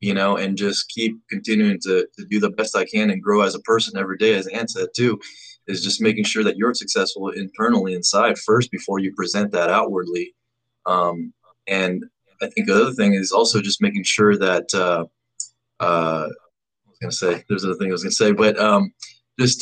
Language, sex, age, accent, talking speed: English, male, 20-39, American, 210 wpm